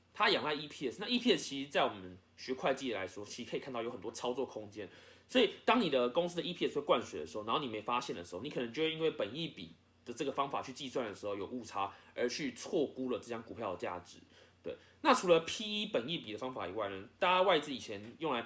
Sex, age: male, 20-39